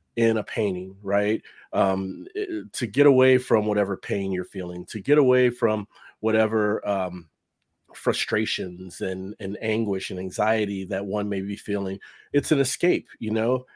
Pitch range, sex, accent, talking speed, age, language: 95-120 Hz, male, American, 155 wpm, 40-59, English